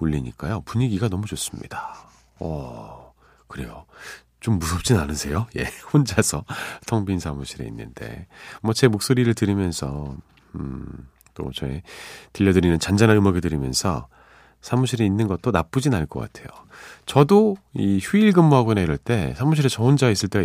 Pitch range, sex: 85-130 Hz, male